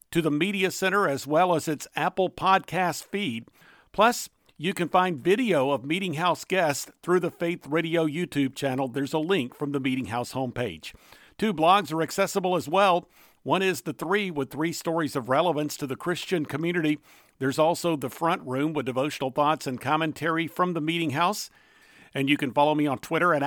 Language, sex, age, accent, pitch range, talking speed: English, male, 50-69, American, 140-175 Hz, 190 wpm